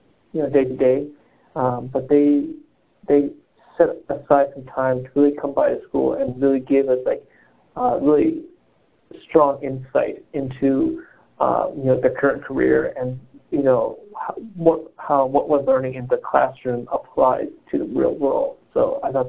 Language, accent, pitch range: English, American, 125-140 Hz